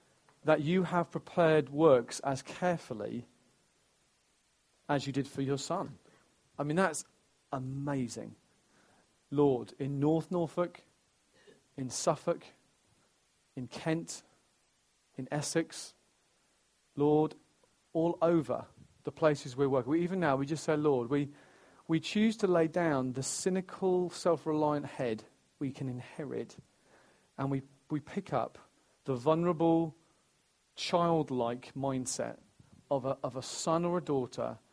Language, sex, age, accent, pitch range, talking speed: English, male, 40-59, British, 135-165 Hz, 125 wpm